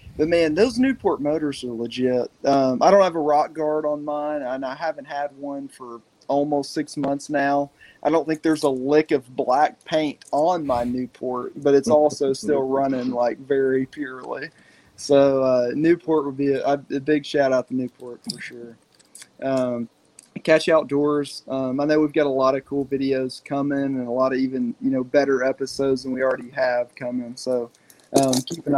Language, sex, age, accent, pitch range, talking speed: English, male, 20-39, American, 130-150 Hz, 190 wpm